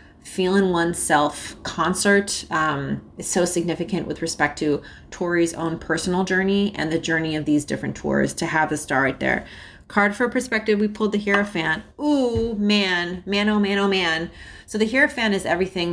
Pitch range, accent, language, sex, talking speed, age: 155-195 Hz, American, English, female, 175 wpm, 30-49